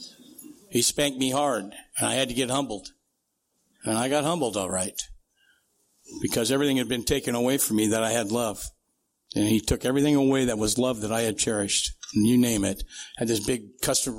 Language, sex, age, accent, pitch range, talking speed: English, male, 60-79, American, 110-135 Hz, 205 wpm